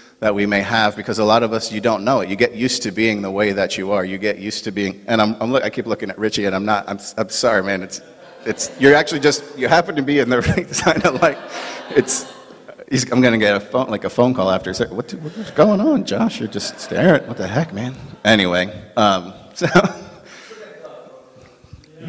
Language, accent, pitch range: English, American, 95-115 Hz